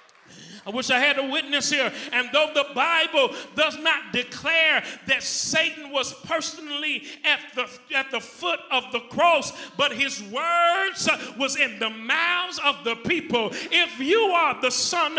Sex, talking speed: male, 160 wpm